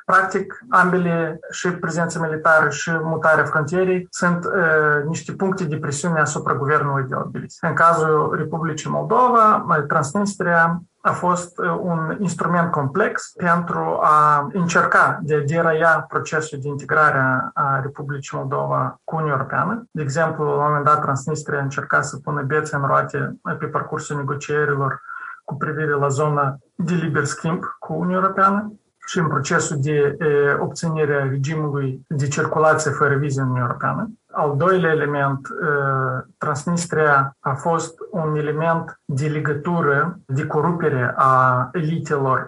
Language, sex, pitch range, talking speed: Romanian, male, 145-165 Hz, 135 wpm